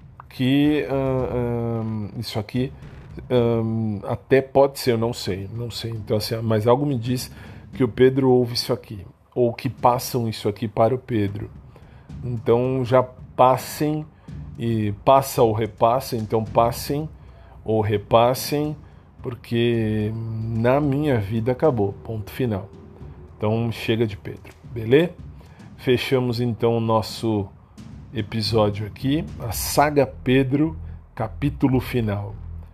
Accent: Brazilian